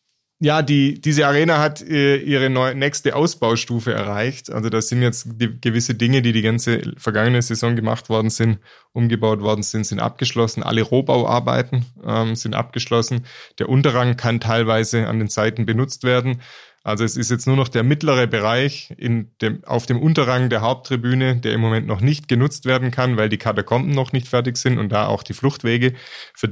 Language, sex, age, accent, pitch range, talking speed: German, male, 20-39, German, 115-135 Hz, 185 wpm